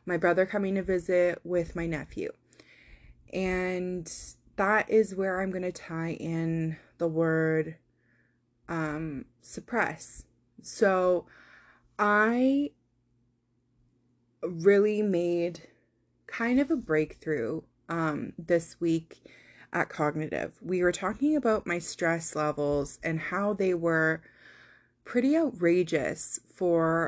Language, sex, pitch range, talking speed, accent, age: English, female, 155-190 Hz, 105 wpm, American, 20-39